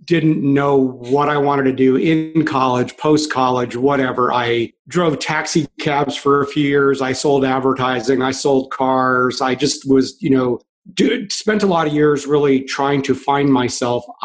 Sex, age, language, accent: male, 40-59, English, American